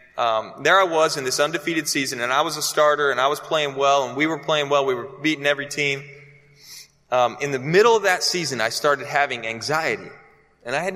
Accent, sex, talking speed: American, male, 230 wpm